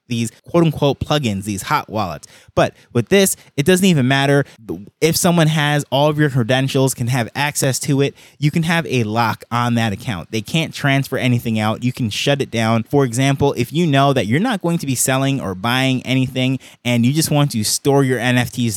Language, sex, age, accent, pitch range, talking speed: English, male, 20-39, American, 115-140 Hz, 210 wpm